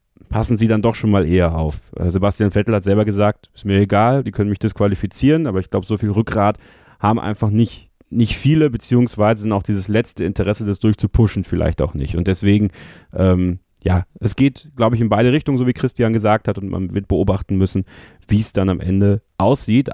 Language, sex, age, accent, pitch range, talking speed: German, male, 30-49, German, 100-120 Hz, 210 wpm